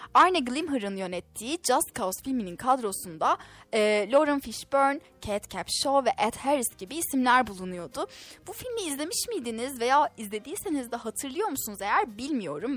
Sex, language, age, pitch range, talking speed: female, Turkish, 10-29, 210-285 Hz, 135 wpm